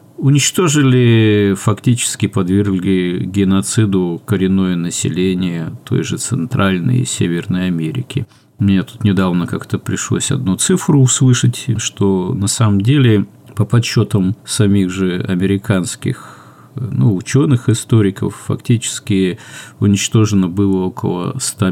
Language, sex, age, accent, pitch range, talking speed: Russian, male, 50-69, native, 95-125 Hz, 100 wpm